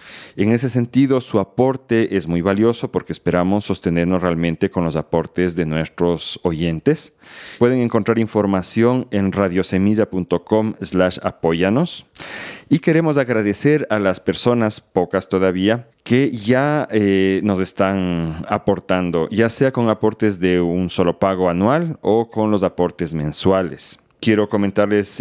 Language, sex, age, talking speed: Spanish, male, 40-59, 130 wpm